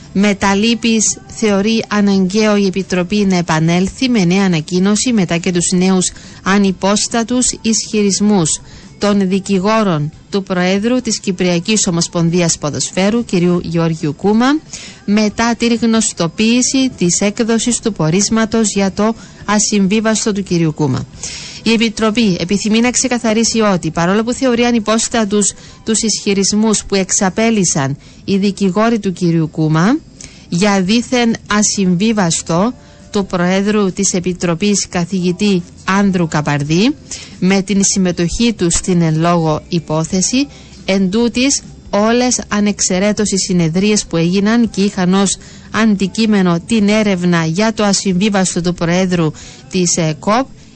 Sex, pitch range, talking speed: female, 180-220 Hz, 115 wpm